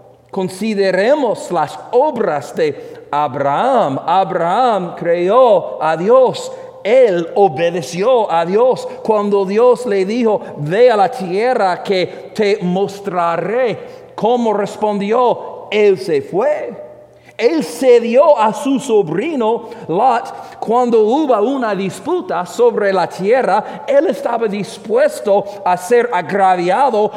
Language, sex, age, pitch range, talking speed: English, male, 50-69, 180-270 Hz, 105 wpm